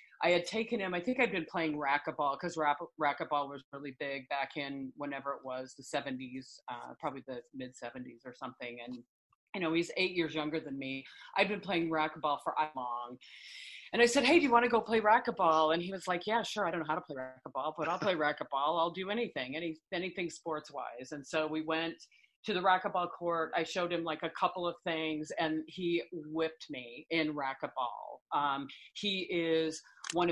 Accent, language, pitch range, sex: American, English, 145-175 Hz, female